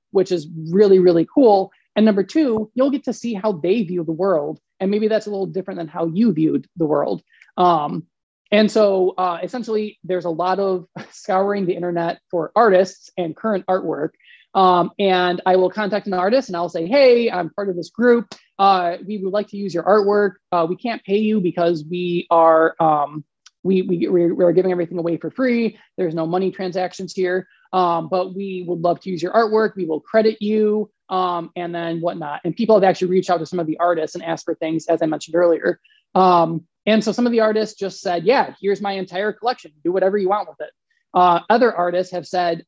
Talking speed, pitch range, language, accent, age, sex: 215 wpm, 170-205 Hz, English, American, 20-39, male